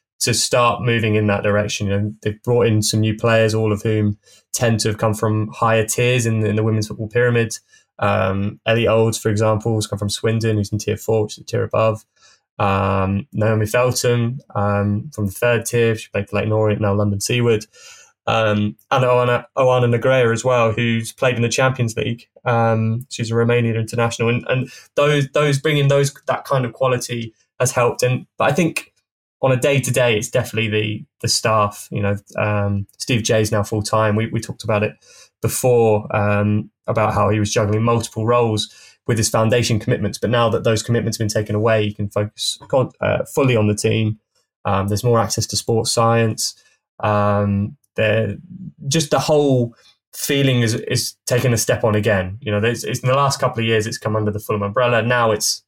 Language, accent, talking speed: English, British, 200 wpm